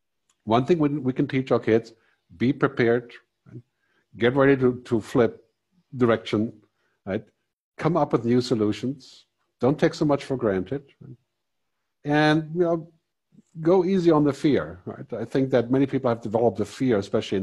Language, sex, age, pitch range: English, male, 50-69, 105-140 Hz